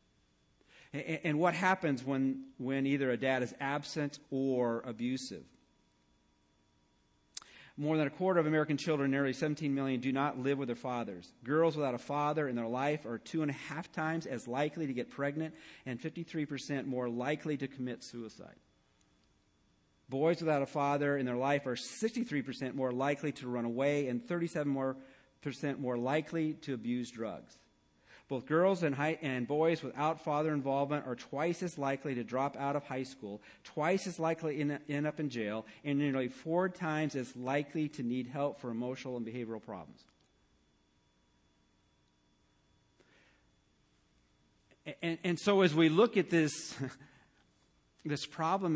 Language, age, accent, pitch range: English, 40-59, American, 120-155 Hz